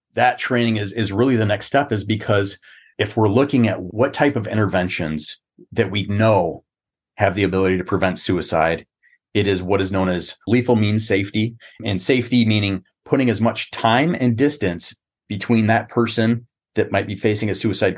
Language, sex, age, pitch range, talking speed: English, male, 30-49, 100-125 Hz, 180 wpm